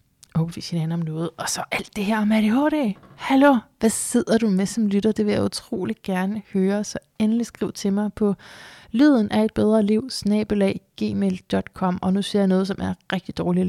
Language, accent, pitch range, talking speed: Danish, native, 170-215 Hz, 210 wpm